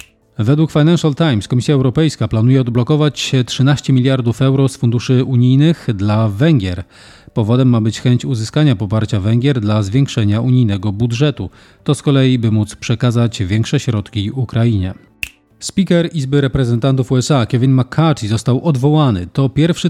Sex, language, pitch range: male, Polish, 110-135 Hz